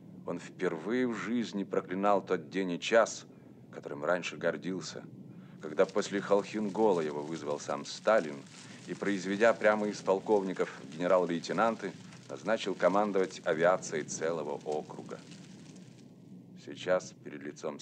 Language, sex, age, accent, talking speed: Russian, male, 40-59, native, 110 wpm